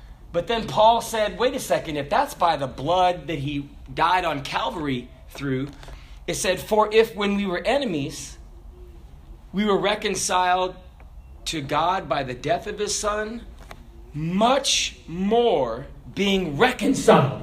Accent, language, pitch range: American, English, 125-205 Hz